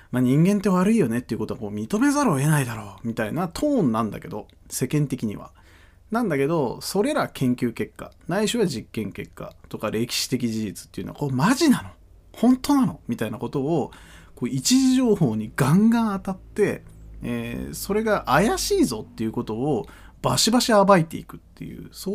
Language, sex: Japanese, male